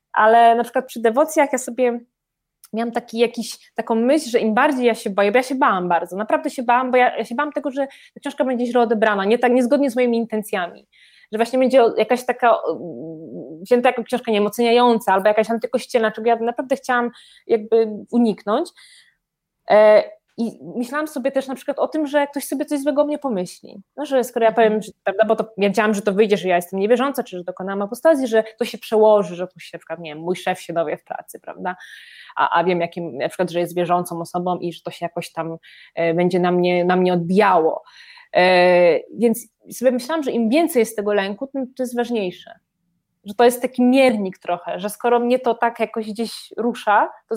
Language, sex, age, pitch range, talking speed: Polish, female, 20-39, 195-250 Hz, 210 wpm